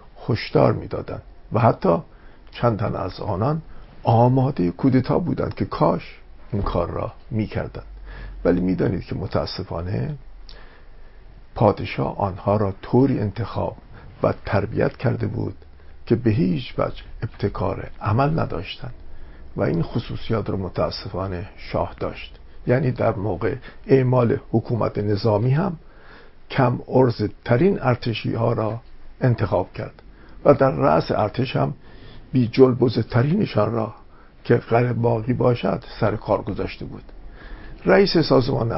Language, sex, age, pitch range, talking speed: English, male, 50-69, 100-130 Hz, 125 wpm